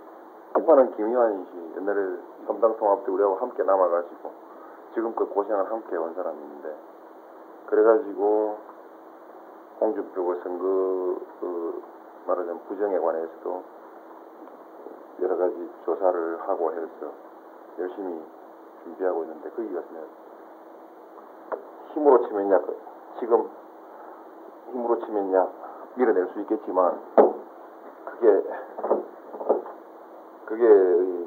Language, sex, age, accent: Korean, male, 40-59, native